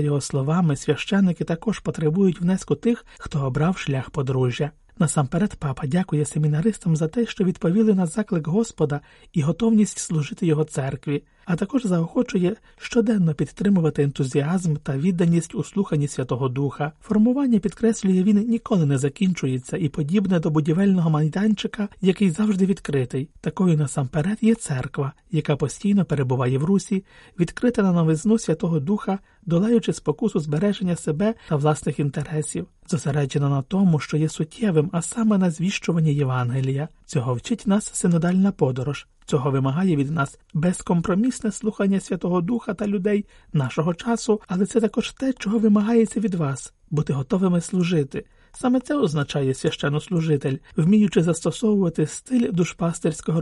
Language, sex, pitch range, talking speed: Ukrainian, male, 150-205 Hz, 135 wpm